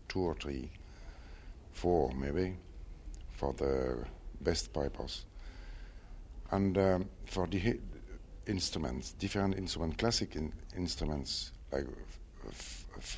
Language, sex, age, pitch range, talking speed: English, male, 60-79, 70-90 Hz, 110 wpm